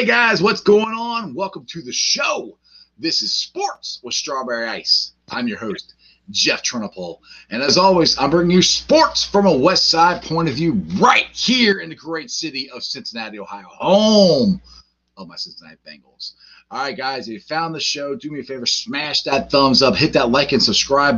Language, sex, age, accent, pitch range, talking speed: English, male, 30-49, American, 125-200 Hz, 195 wpm